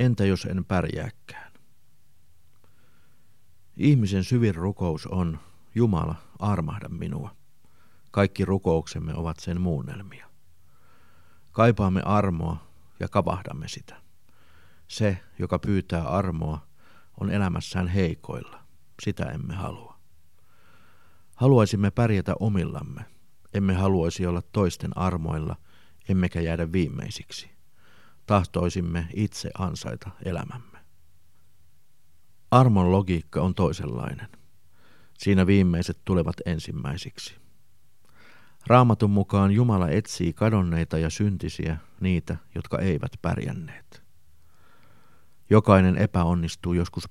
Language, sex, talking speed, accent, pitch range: Finnish, male, 85 wpm, native, 85-100 Hz